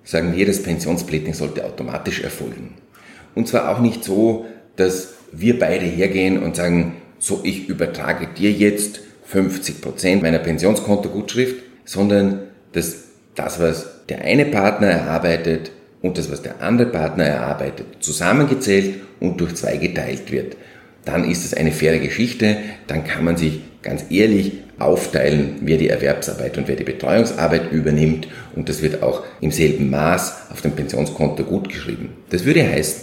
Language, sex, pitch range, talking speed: German, male, 80-105 Hz, 150 wpm